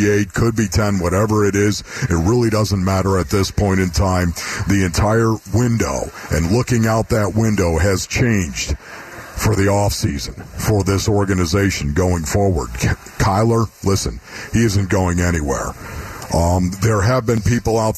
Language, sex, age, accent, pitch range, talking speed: English, male, 50-69, American, 95-110 Hz, 155 wpm